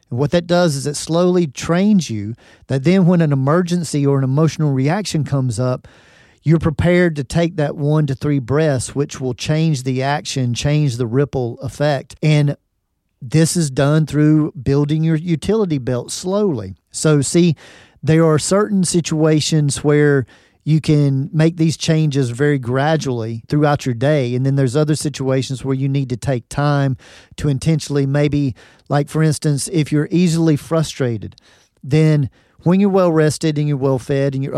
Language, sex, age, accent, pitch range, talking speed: English, male, 40-59, American, 135-160 Hz, 165 wpm